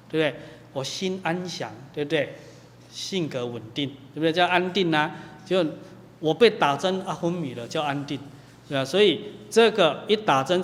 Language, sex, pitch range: Chinese, male, 140-180 Hz